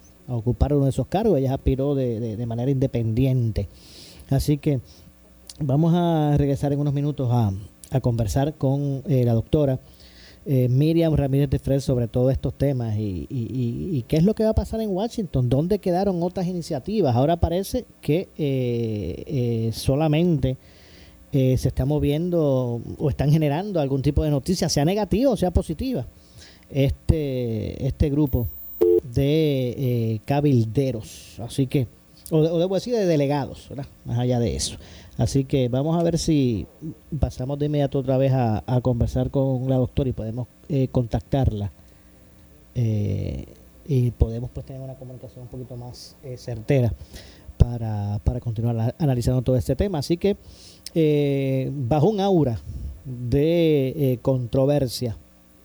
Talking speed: 155 wpm